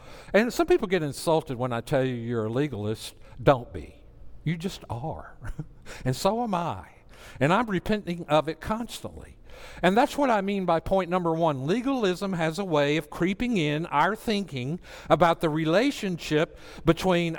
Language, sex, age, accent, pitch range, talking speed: English, male, 60-79, American, 140-215 Hz, 170 wpm